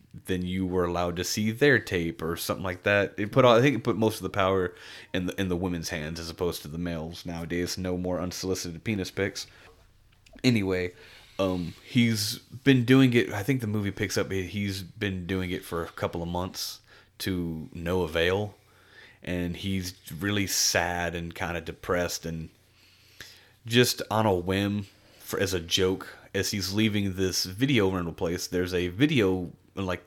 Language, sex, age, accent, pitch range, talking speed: English, male, 30-49, American, 85-105 Hz, 185 wpm